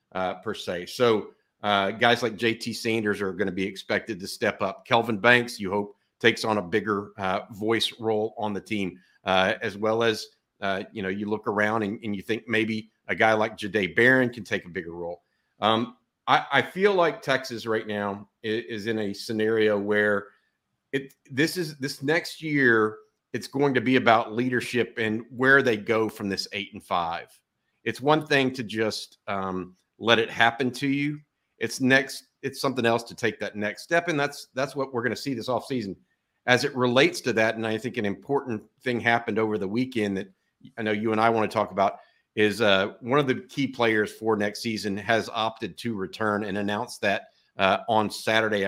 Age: 50-69